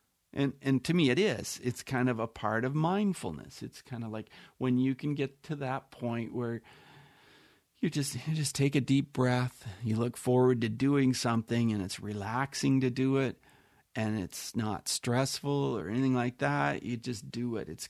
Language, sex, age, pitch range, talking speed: English, male, 40-59, 115-135 Hz, 195 wpm